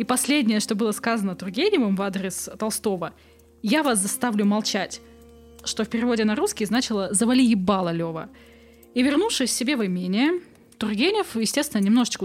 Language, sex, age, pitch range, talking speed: Russian, female, 20-39, 205-265 Hz, 150 wpm